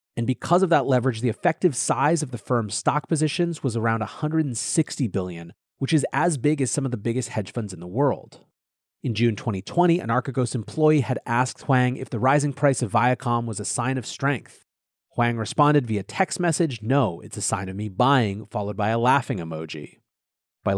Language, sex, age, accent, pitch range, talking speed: English, male, 30-49, American, 110-150 Hz, 200 wpm